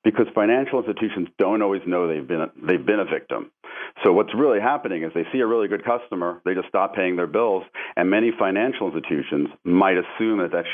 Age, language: 40-59, English